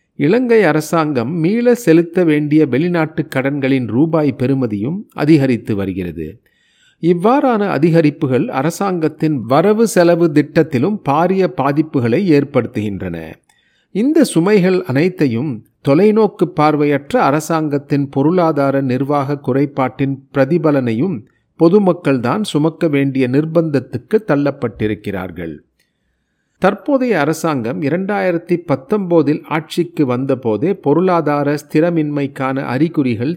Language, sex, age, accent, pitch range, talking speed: Tamil, male, 40-59, native, 130-170 Hz, 80 wpm